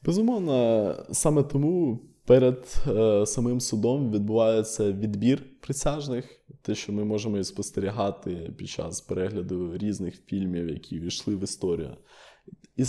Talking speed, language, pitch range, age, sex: 110 wpm, Ukrainian, 105-135 Hz, 20-39, male